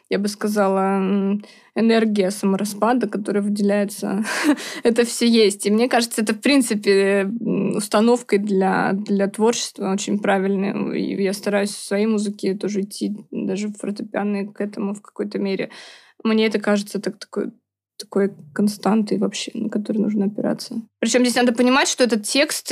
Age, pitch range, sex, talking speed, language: 20-39, 205-240 Hz, female, 150 wpm, Russian